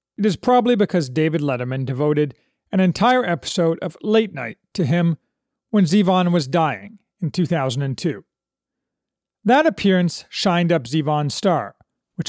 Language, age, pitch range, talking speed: English, 40-59, 155-205 Hz, 135 wpm